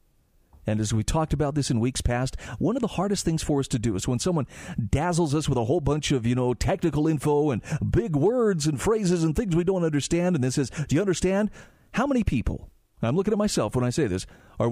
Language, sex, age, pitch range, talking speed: English, male, 40-59, 115-160 Hz, 245 wpm